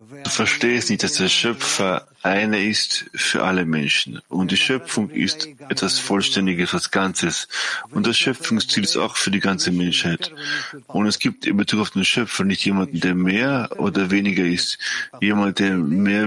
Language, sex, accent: English, male, German